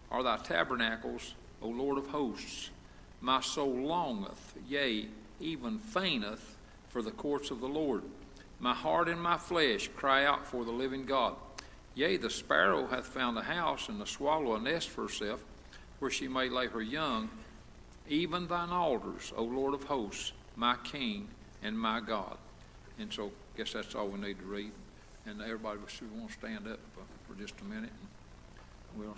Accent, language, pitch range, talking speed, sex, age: American, English, 110-145 Hz, 175 wpm, male, 60-79